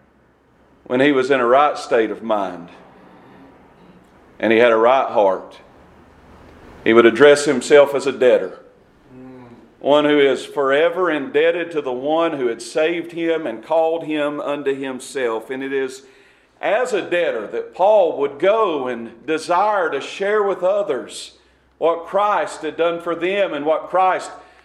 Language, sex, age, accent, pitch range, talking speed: English, male, 40-59, American, 135-220 Hz, 155 wpm